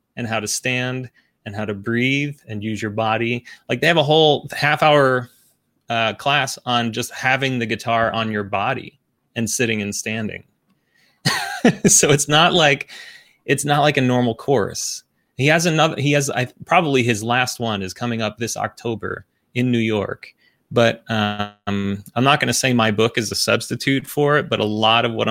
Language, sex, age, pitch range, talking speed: English, male, 30-49, 105-125 Hz, 185 wpm